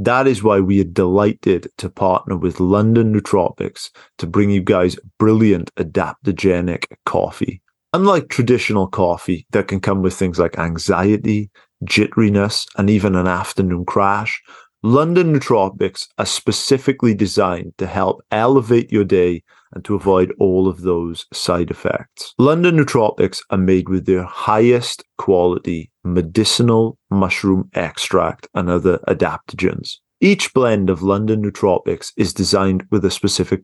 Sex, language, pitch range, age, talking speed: male, English, 95-115 Hz, 30-49, 135 wpm